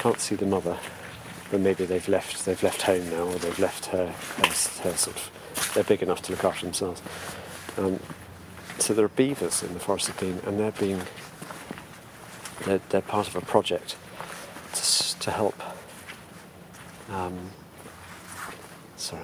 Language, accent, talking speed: English, British, 160 wpm